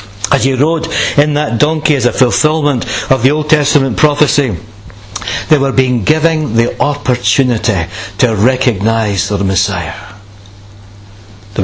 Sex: male